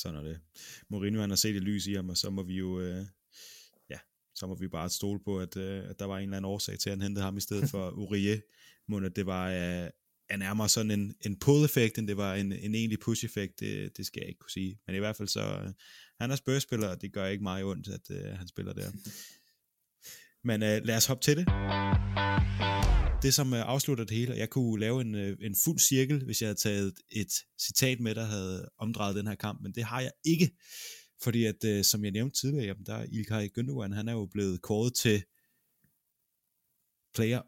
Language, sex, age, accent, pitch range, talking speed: Danish, male, 20-39, native, 100-120 Hz, 225 wpm